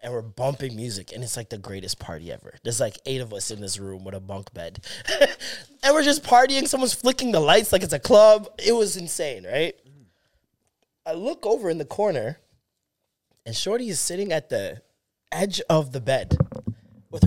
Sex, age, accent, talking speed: male, 20-39, American, 195 wpm